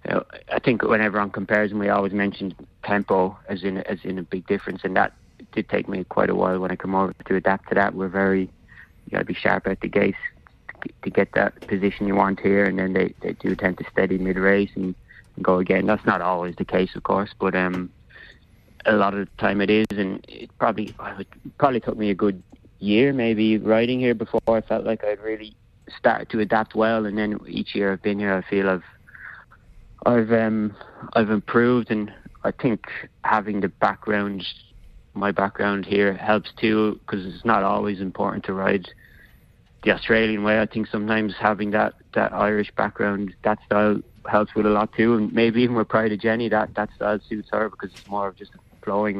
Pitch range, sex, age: 95-110 Hz, male, 30-49